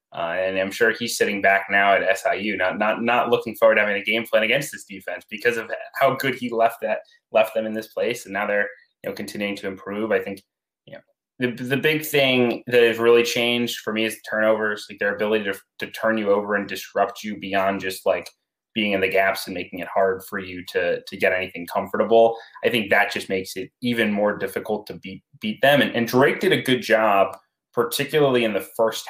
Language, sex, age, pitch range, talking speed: English, male, 20-39, 100-120 Hz, 230 wpm